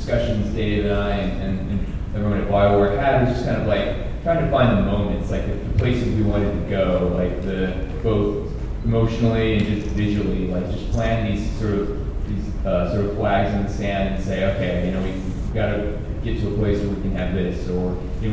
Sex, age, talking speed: male, 30-49, 230 wpm